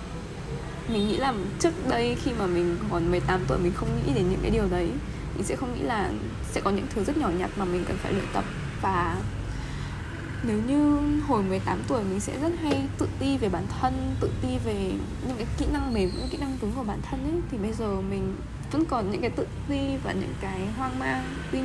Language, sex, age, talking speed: Vietnamese, female, 20-39, 235 wpm